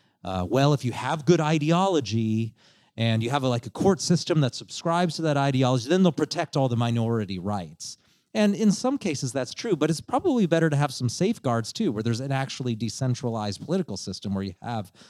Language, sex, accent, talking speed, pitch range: English, male, American, 205 wpm, 100-145 Hz